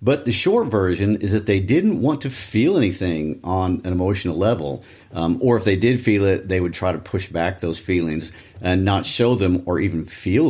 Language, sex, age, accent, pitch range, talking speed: English, male, 50-69, American, 90-110 Hz, 215 wpm